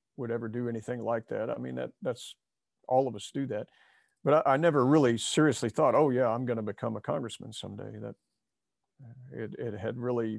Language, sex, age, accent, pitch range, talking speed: English, male, 50-69, American, 115-140 Hz, 210 wpm